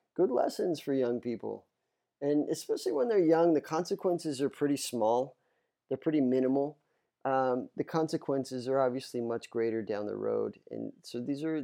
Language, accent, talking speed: English, American, 165 wpm